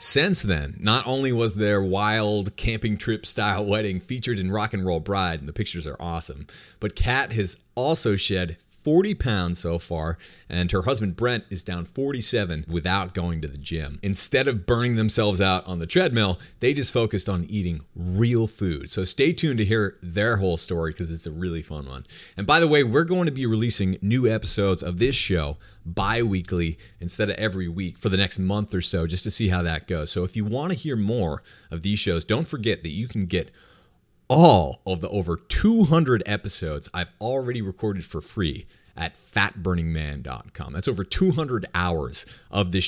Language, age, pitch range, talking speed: English, 30-49, 85-110 Hz, 195 wpm